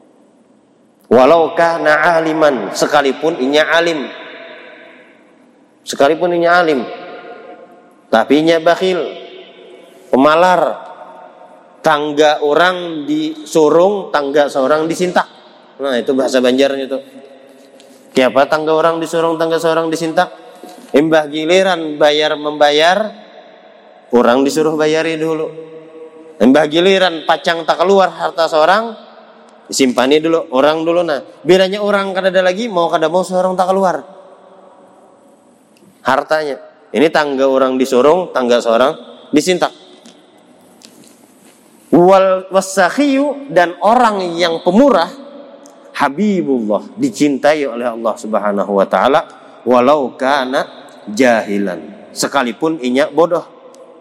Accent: native